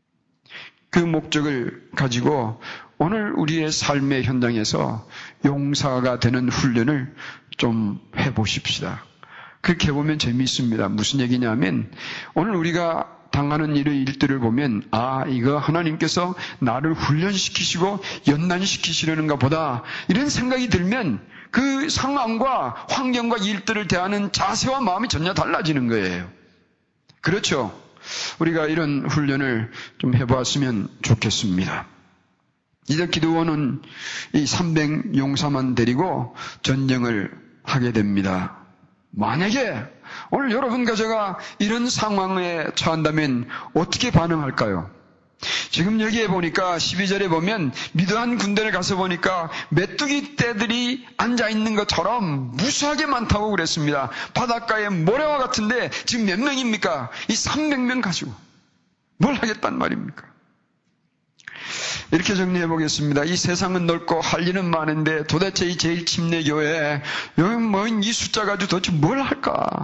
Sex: male